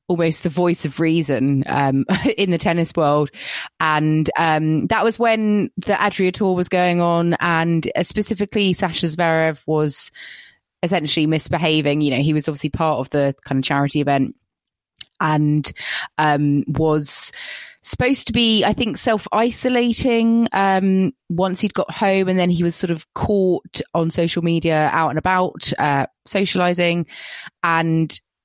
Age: 20-39